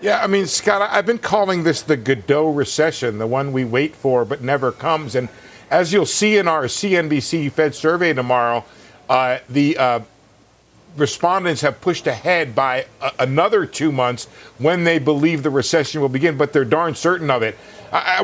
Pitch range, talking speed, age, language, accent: 140-175 Hz, 180 wpm, 50-69, English, American